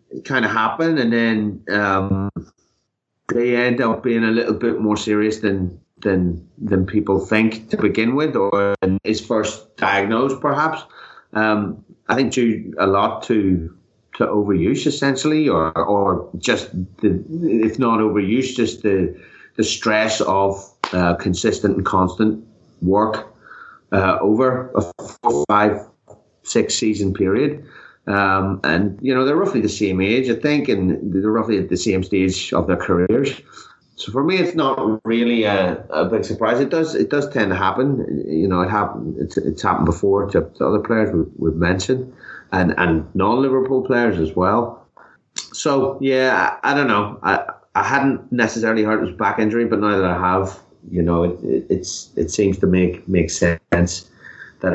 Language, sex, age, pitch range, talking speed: English, male, 30-49, 90-115 Hz, 170 wpm